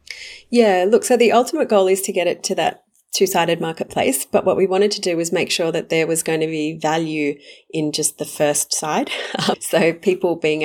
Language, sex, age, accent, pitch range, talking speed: English, female, 30-49, Australian, 150-180 Hz, 215 wpm